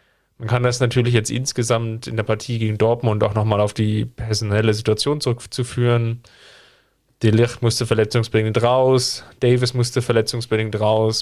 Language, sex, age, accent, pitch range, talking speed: German, male, 10-29, German, 110-125 Hz, 145 wpm